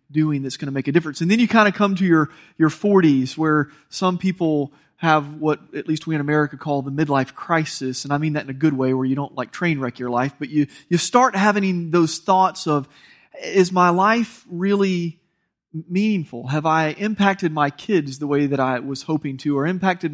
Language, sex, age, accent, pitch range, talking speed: English, male, 30-49, American, 140-180 Hz, 220 wpm